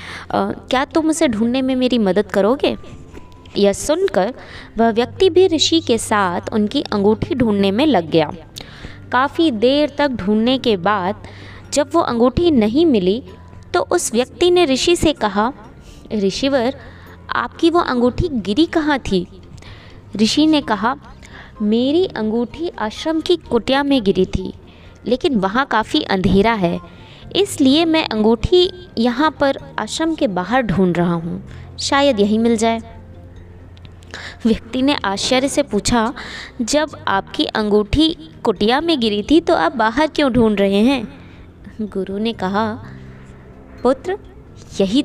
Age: 20-39